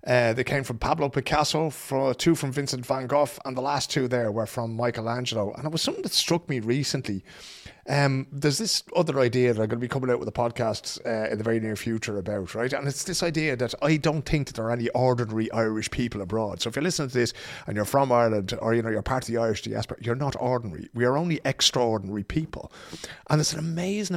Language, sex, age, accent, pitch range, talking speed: English, male, 30-49, British, 110-150 Hz, 245 wpm